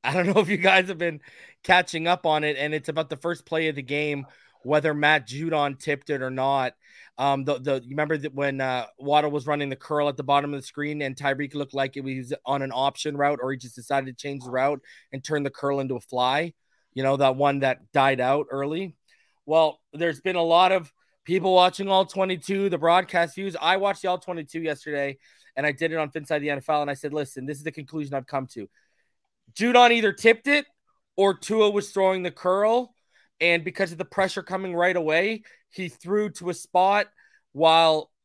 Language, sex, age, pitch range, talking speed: English, male, 20-39, 135-180 Hz, 220 wpm